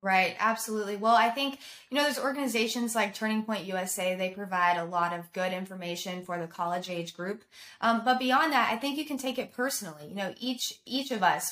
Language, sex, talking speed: English, female, 220 wpm